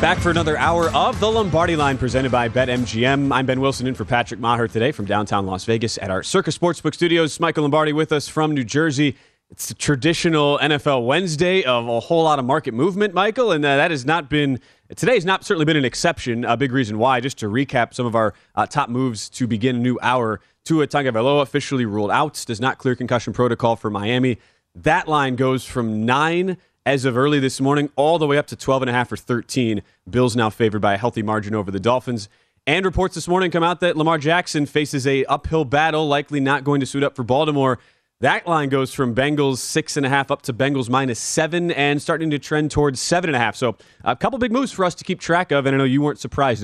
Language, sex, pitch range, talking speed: English, male, 120-155 Hz, 225 wpm